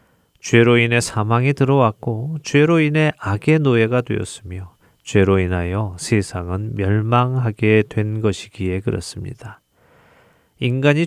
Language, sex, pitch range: Korean, male, 100-130 Hz